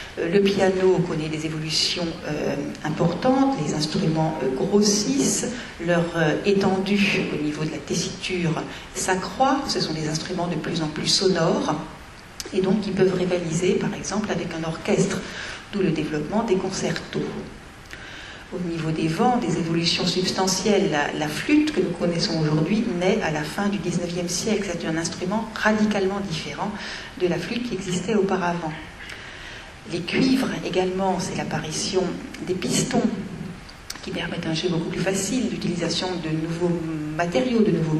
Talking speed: 150 wpm